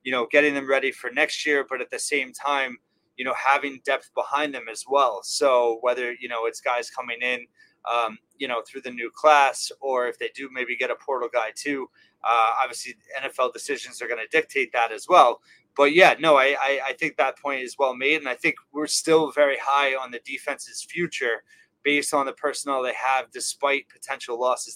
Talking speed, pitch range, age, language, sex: 215 wpm, 130-160 Hz, 20-39, English, male